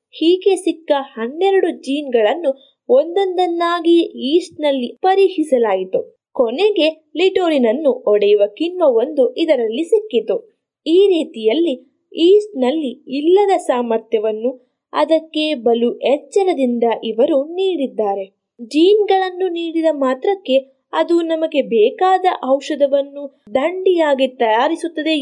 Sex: female